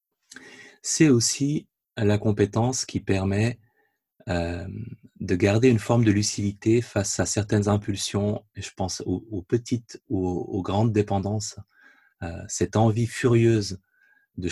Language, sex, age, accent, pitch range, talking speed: French, male, 30-49, French, 95-110 Hz, 130 wpm